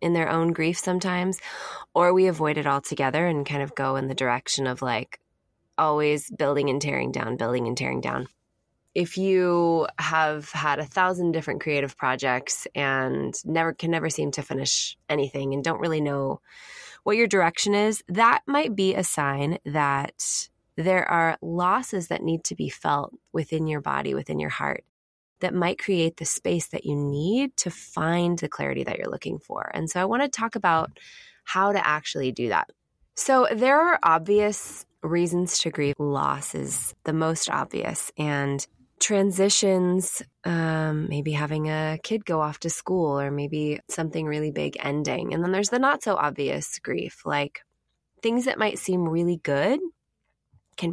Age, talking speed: 20-39, 170 wpm